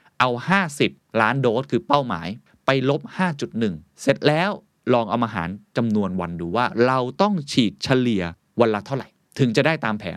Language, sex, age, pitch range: Thai, male, 20-39, 110-150 Hz